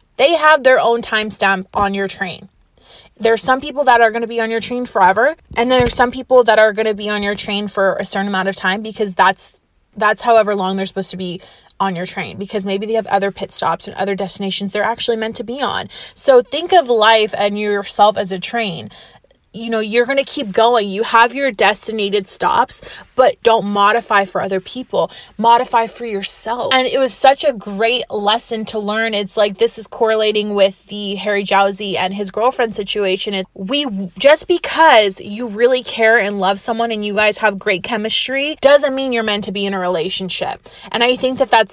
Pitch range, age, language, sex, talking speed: 200-240 Hz, 20-39, English, female, 210 wpm